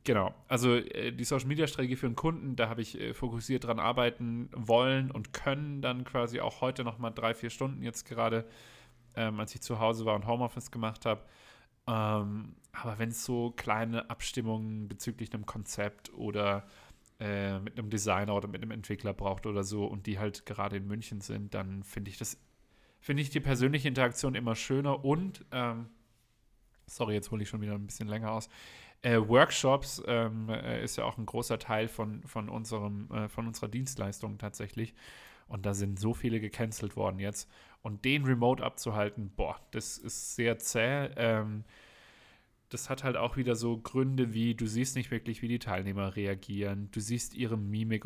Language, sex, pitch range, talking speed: German, male, 105-120 Hz, 175 wpm